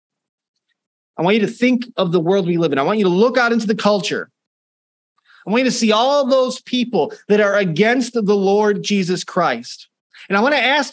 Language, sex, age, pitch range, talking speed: English, male, 30-49, 170-235 Hz, 220 wpm